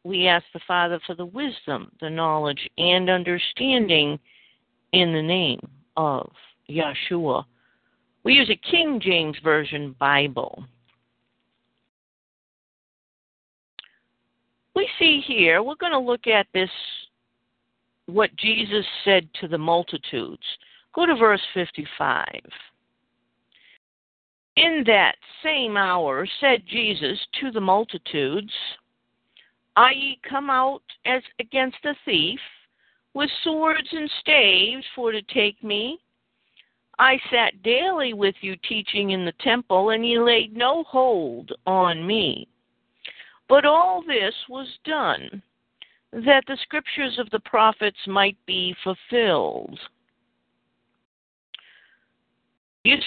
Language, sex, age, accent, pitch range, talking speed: English, female, 50-69, American, 175-265 Hz, 110 wpm